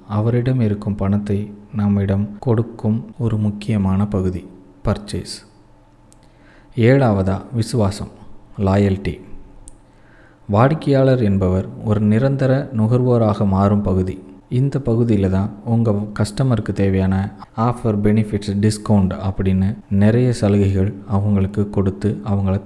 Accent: native